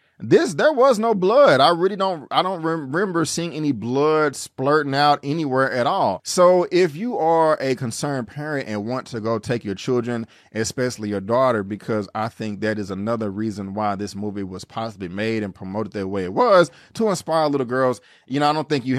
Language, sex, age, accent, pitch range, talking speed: English, male, 30-49, American, 110-150 Hz, 205 wpm